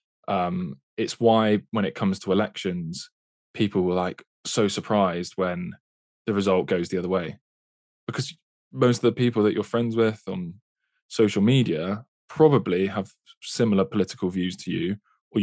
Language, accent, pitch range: English, British, 90-110 Hz